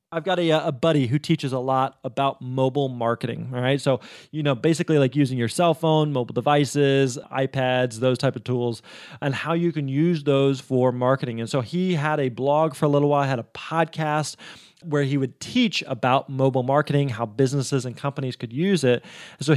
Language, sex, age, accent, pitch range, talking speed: English, male, 20-39, American, 135-165 Hz, 200 wpm